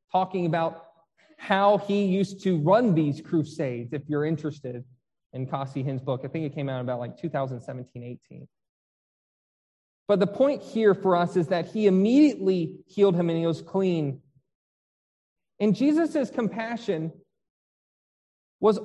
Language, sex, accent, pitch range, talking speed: English, male, American, 170-235 Hz, 145 wpm